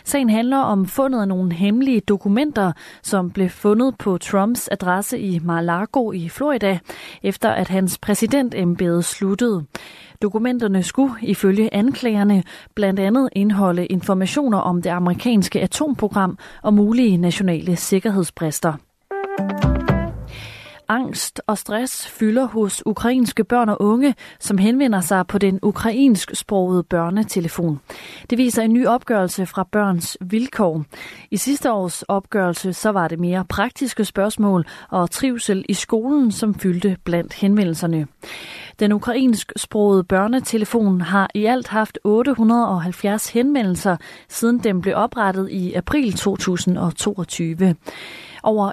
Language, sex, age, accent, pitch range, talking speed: Danish, female, 30-49, native, 185-230 Hz, 125 wpm